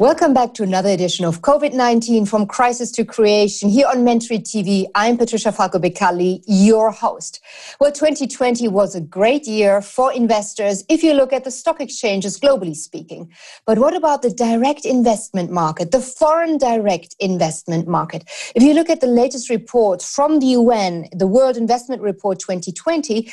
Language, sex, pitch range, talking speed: English, female, 195-250 Hz, 165 wpm